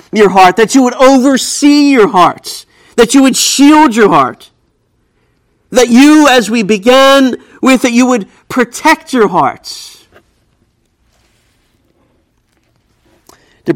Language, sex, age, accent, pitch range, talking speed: English, male, 50-69, American, 180-245 Hz, 120 wpm